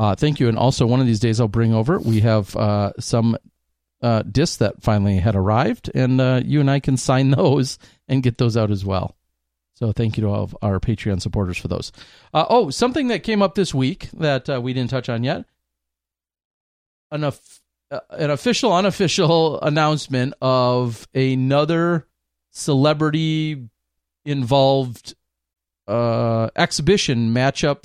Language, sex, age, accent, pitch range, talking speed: English, male, 40-59, American, 105-145 Hz, 155 wpm